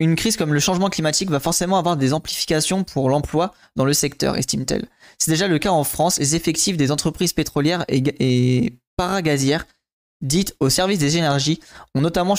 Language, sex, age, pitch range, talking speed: French, male, 20-39, 135-165 Hz, 185 wpm